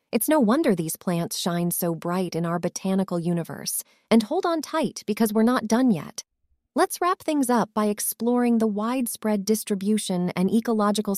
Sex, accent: female, American